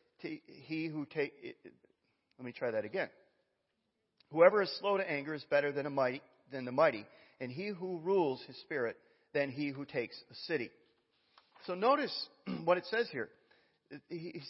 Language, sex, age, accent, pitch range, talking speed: English, male, 40-59, American, 135-195 Hz, 165 wpm